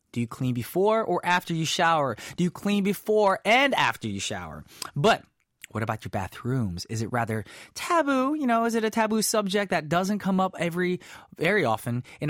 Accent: American